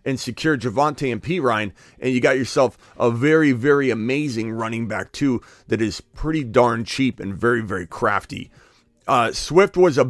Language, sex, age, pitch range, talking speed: English, male, 30-49, 120-160 Hz, 170 wpm